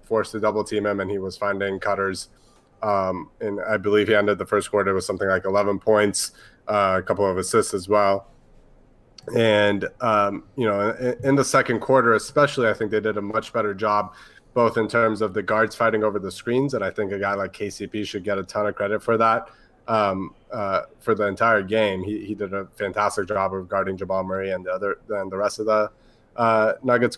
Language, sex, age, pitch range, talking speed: English, male, 20-39, 100-115 Hz, 220 wpm